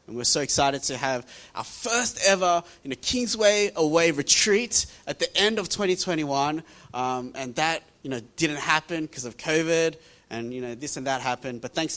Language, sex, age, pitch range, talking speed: English, male, 20-39, 125-175 Hz, 190 wpm